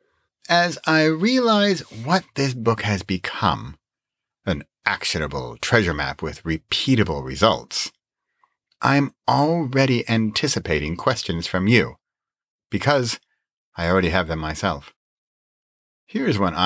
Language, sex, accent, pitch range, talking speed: English, male, American, 95-135 Hz, 105 wpm